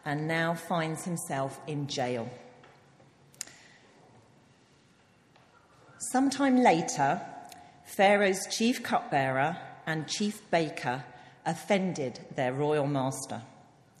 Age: 40-59